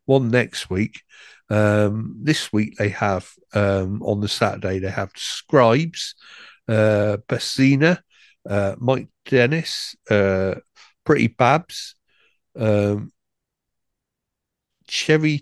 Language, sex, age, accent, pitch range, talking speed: English, male, 60-79, British, 105-135 Hz, 95 wpm